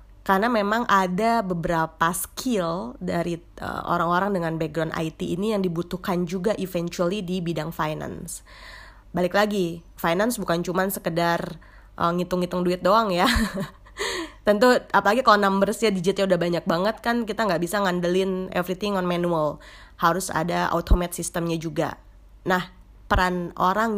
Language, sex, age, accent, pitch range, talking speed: Indonesian, female, 20-39, native, 170-215 Hz, 140 wpm